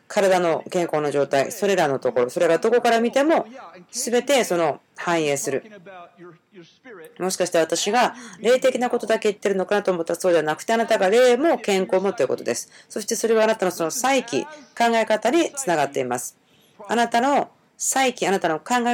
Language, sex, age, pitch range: Japanese, female, 40-59, 170-230 Hz